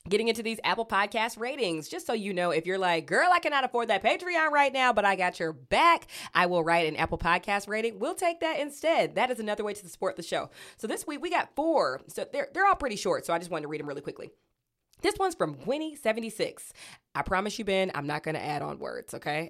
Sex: female